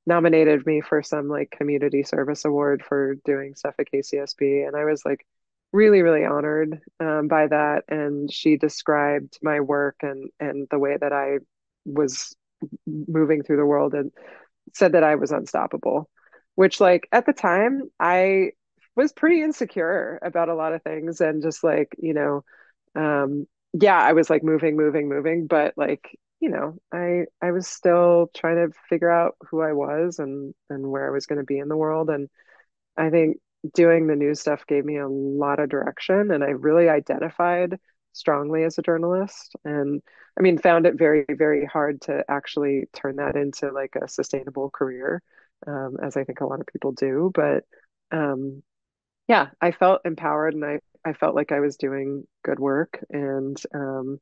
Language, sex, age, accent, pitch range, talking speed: English, female, 20-39, American, 140-165 Hz, 180 wpm